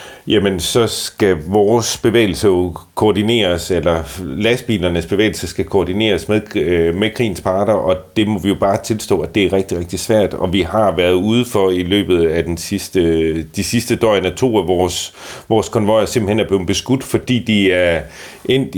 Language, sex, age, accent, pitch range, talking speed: Danish, male, 40-59, native, 90-105 Hz, 180 wpm